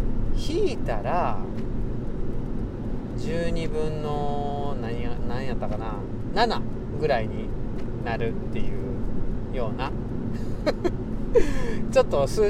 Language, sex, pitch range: Japanese, male, 115-135 Hz